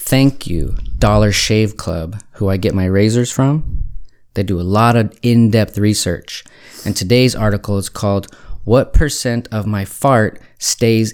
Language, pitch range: English, 100-120 Hz